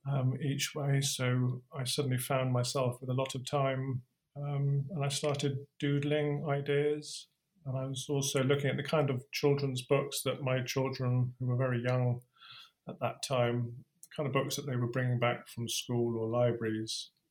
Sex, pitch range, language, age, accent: male, 120-145 Hz, Chinese, 30-49, British